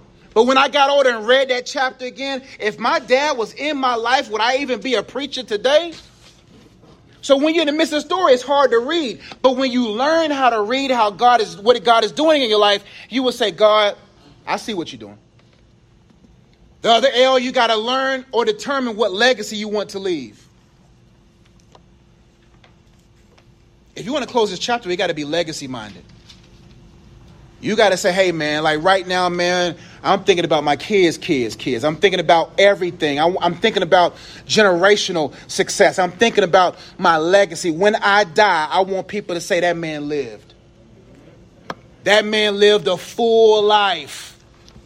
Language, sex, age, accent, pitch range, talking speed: English, male, 30-49, American, 190-250 Hz, 185 wpm